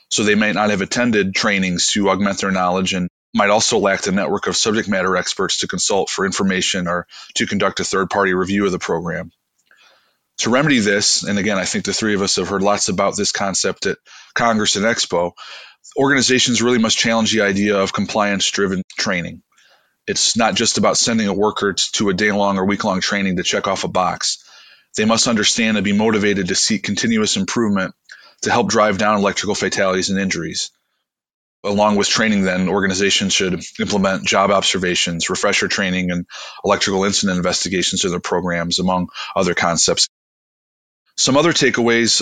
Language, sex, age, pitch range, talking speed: English, male, 20-39, 95-110 Hz, 175 wpm